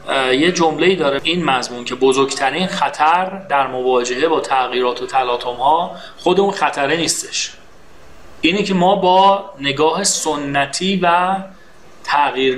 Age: 30-49